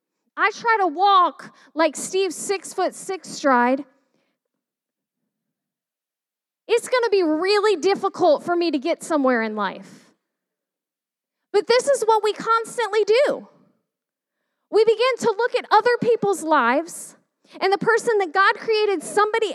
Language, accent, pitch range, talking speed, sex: English, American, 300-415 Hz, 135 wpm, female